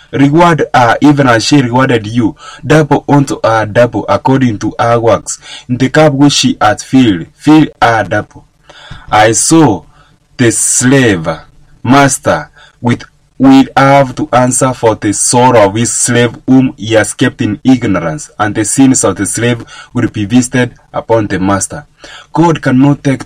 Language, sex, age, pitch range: English, male, 20-39, 110-145 Hz